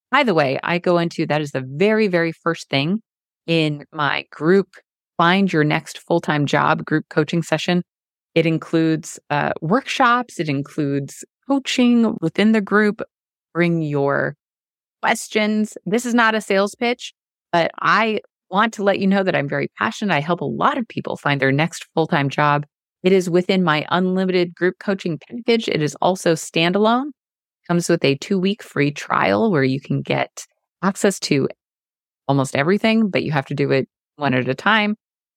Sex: female